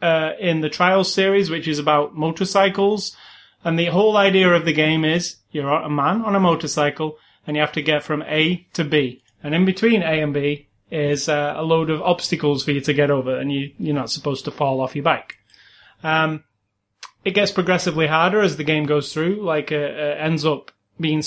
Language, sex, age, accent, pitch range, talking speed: English, male, 30-49, British, 150-185 Hz, 210 wpm